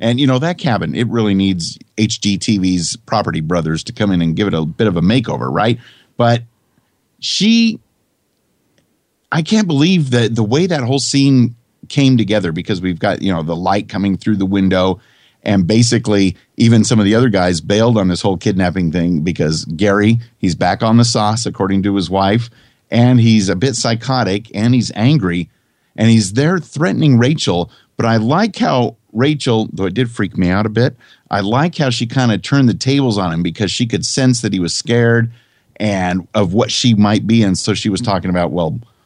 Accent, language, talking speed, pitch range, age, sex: American, English, 200 wpm, 95-125 Hz, 50-69, male